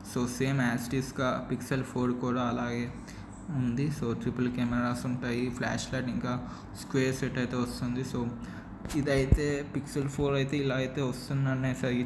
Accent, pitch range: native, 120-135 Hz